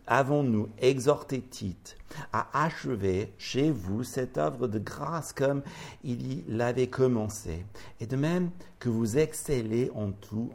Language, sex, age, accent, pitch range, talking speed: French, male, 60-79, French, 95-125 Hz, 135 wpm